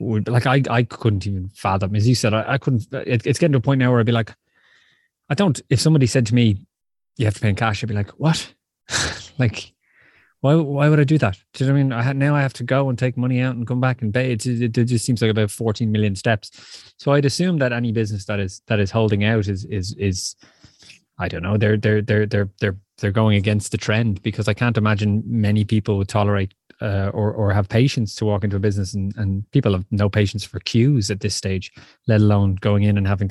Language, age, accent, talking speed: English, 20-39, Irish, 255 wpm